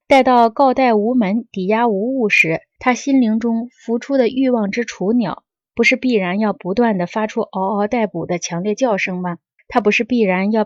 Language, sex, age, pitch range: Chinese, female, 20-39, 195-245 Hz